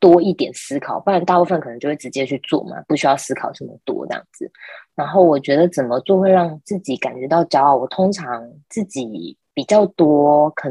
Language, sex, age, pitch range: Chinese, female, 20-39, 135-175 Hz